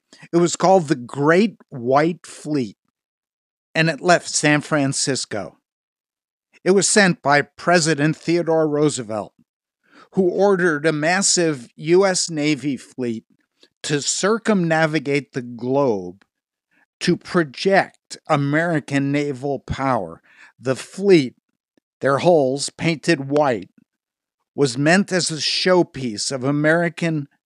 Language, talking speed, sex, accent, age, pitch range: English, 105 wpm, male, American, 60-79, 135-175 Hz